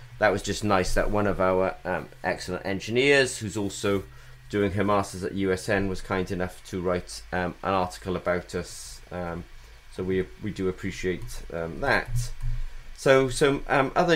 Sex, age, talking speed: male, 30-49, 170 wpm